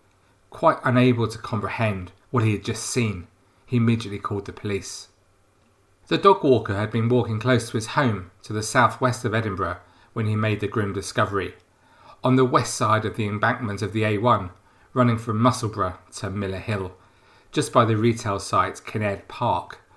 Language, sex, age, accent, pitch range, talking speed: English, male, 40-59, British, 100-120 Hz, 175 wpm